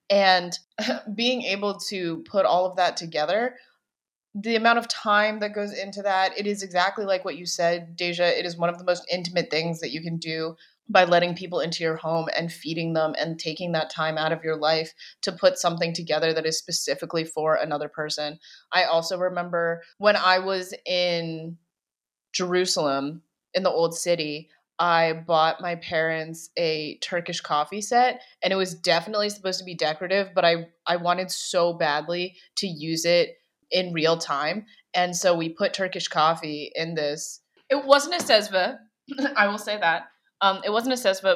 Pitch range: 165-195 Hz